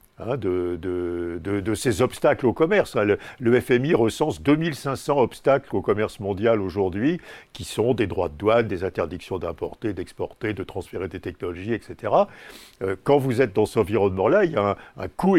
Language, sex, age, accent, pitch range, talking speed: French, male, 60-79, French, 100-125 Hz, 175 wpm